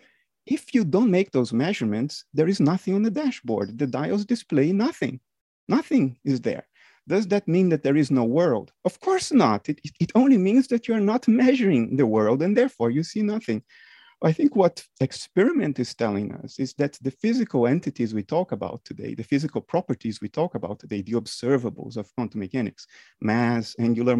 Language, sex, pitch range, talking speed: English, male, 120-190 Hz, 190 wpm